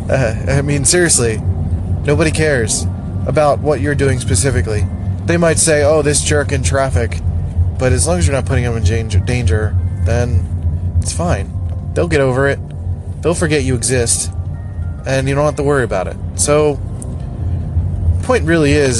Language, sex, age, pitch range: English, male, 20-39, 90-130 Hz